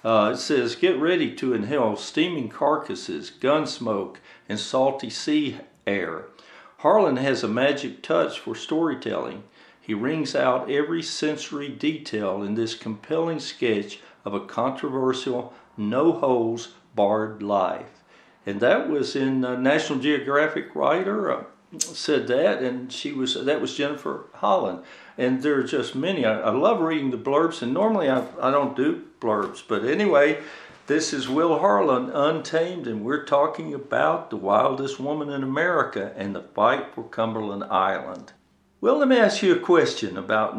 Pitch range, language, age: 125-165 Hz, English, 60-79